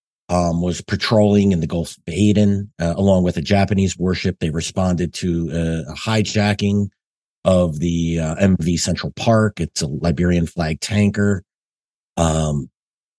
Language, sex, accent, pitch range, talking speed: English, male, American, 85-105 Hz, 145 wpm